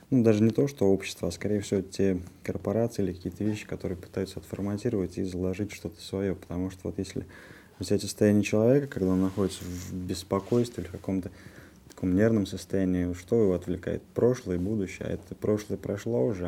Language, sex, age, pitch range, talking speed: Russian, male, 20-39, 90-105 Hz, 180 wpm